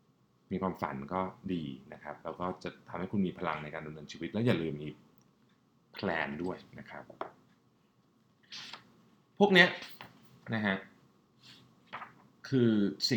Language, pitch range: Thai, 85-115 Hz